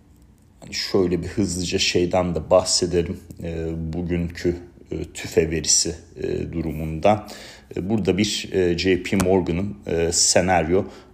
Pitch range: 85-105 Hz